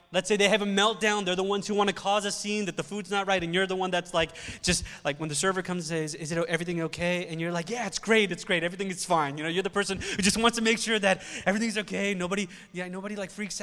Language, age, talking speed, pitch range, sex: English, 20-39, 300 wpm, 165-225 Hz, male